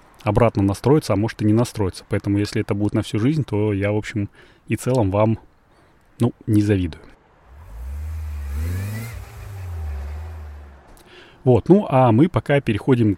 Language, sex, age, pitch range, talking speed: Russian, male, 20-39, 100-120 Hz, 135 wpm